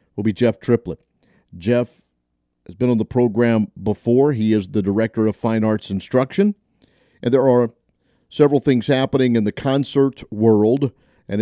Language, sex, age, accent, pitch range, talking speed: English, male, 50-69, American, 105-130 Hz, 160 wpm